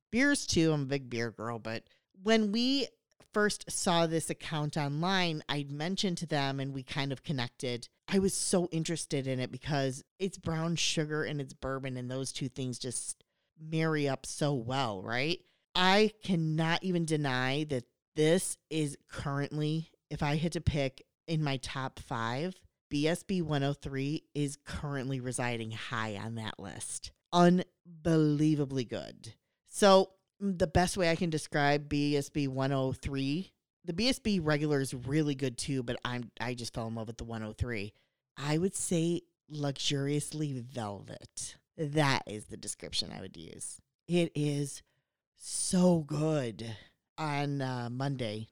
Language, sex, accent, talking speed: English, female, American, 150 wpm